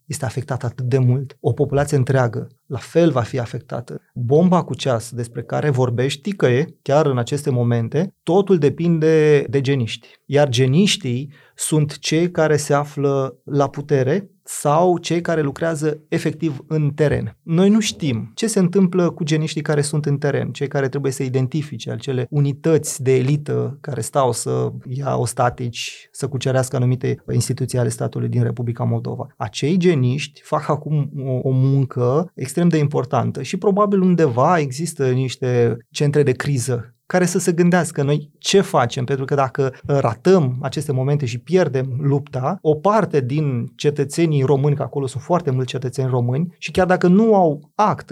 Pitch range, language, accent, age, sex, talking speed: 130-165 Hz, Romanian, native, 30-49, male, 165 wpm